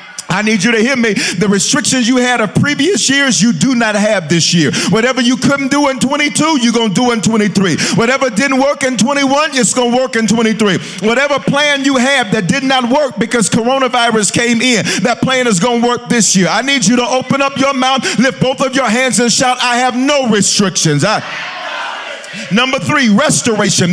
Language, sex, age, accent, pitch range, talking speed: English, male, 50-69, American, 215-265 Hz, 205 wpm